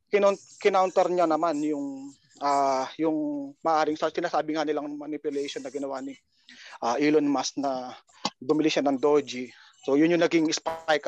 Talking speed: 145 wpm